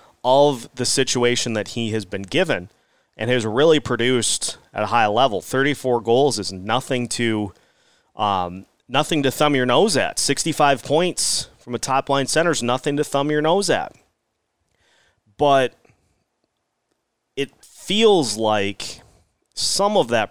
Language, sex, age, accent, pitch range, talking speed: English, male, 30-49, American, 110-135 Hz, 140 wpm